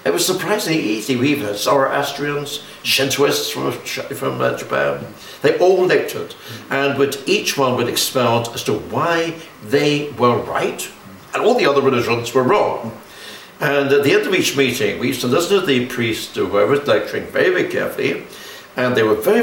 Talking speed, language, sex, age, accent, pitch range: 175 wpm, English, male, 60-79, British, 115-145 Hz